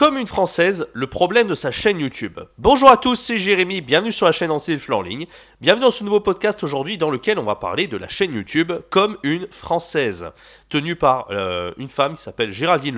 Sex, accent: male, French